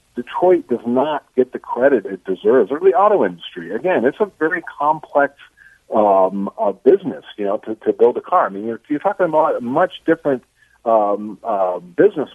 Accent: American